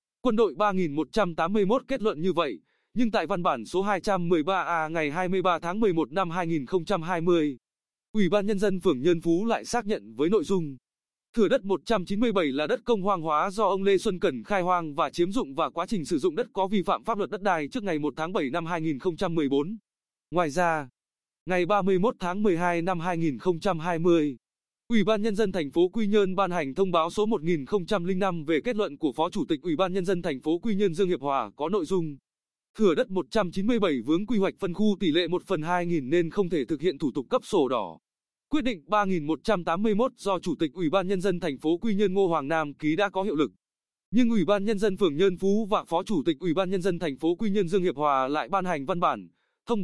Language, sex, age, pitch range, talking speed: Vietnamese, male, 20-39, 170-210 Hz, 225 wpm